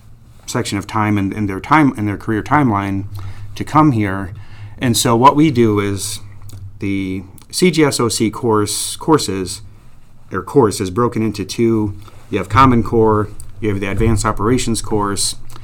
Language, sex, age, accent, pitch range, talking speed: English, male, 30-49, American, 100-115 Hz, 155 wpm